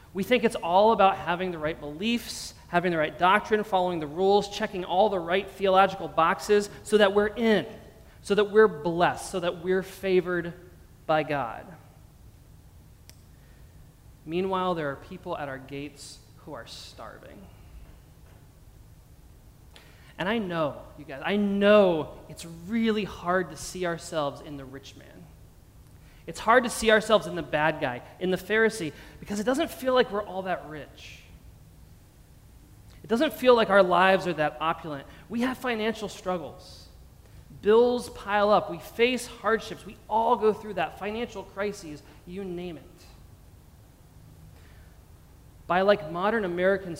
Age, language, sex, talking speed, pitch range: 20-39, English, male, 150 wpm, 150-205 Hz